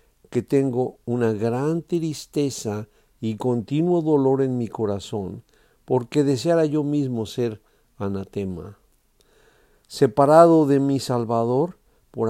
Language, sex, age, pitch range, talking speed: Spanish, male, 50-69, 105-140 Hz, 105 wpm